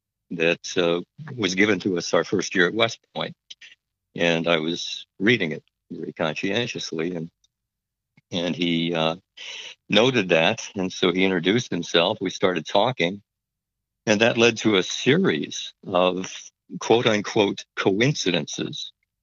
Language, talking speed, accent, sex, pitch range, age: English, 130 wpm, American, male, 85-100 Hz, 60-79